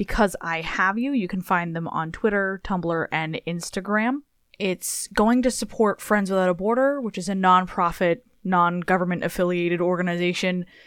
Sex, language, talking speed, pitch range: female, English, 160 wpm, 180-225 Hz